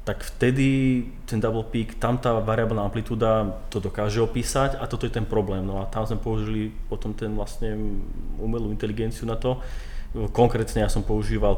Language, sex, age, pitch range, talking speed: Slovak, male, 30-49, 105-120 Hz, 170 wpm